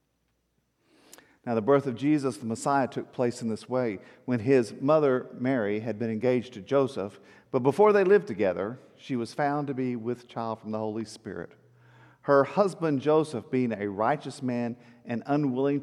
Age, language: 50-69, English